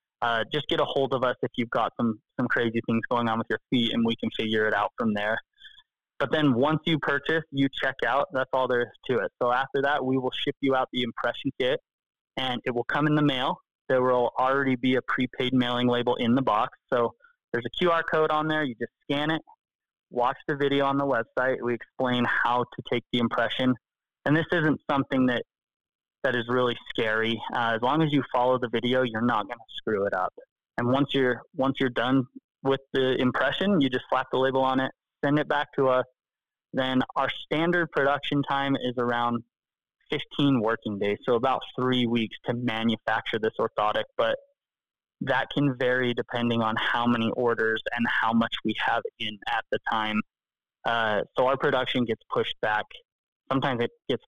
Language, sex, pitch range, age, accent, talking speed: English, male, 120-140 Hz, 20-39, American, 205 wpm